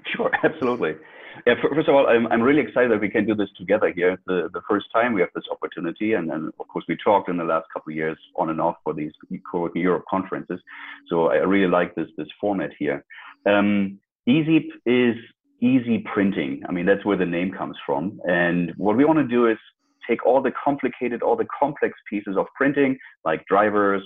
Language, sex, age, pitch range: English, male, 30-49, 90-120 Hz